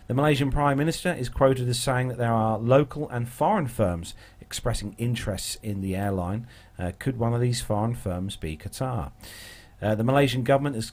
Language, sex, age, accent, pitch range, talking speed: English, male, 40-59, British, 100-125 Hz, 185 wpm